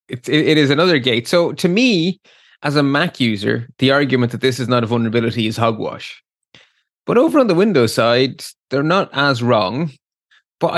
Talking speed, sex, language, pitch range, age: 185 wpm, male, English, 120-175 Hz, 20-39